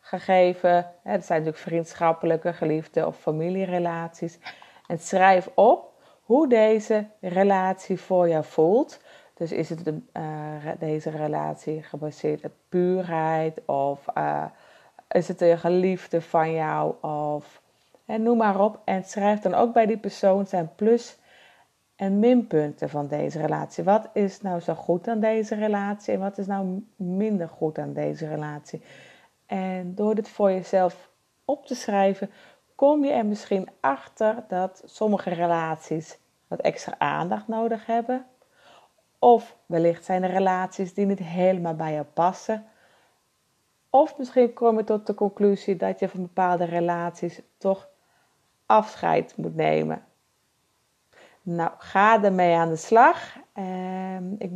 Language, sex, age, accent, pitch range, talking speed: Dutch, female, 30-49, Dutch, 165-210 Hz, 135 wpm